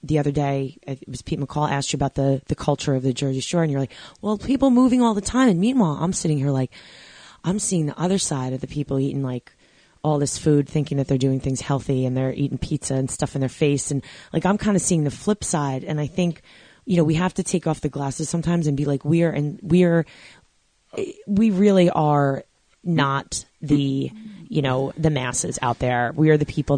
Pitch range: 140-170 Hz